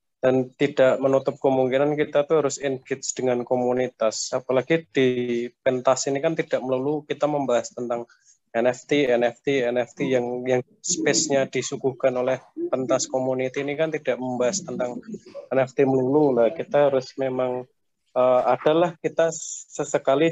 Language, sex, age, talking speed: Indonesian, male, 20-39, 130 wpm